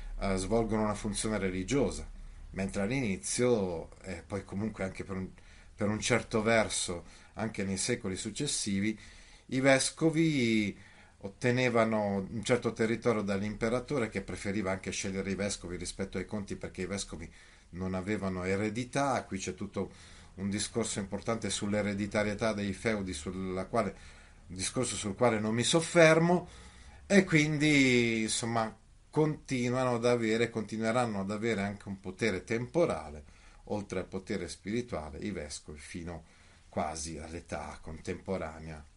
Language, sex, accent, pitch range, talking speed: Italian, male, native, 90-120 Hz, 130 wpm